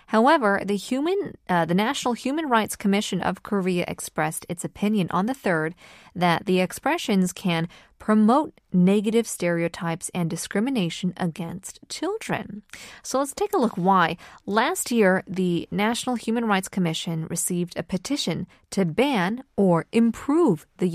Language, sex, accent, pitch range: Korean, female, American, 175-230 Hz